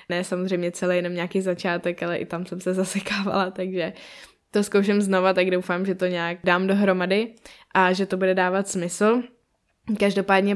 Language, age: Czech, 10-29